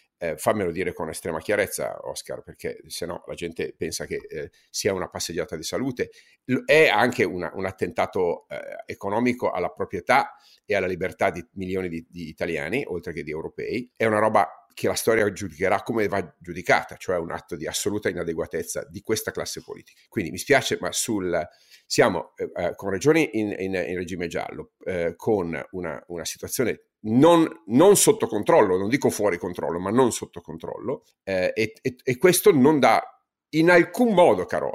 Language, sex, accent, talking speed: Italian, male, native, 180 wpm